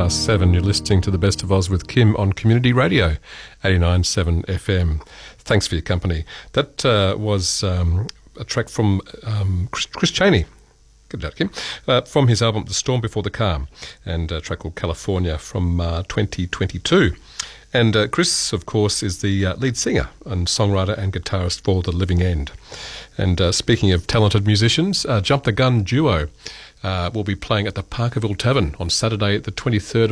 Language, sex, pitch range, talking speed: English, male, 90-115 Hz, 175 wpm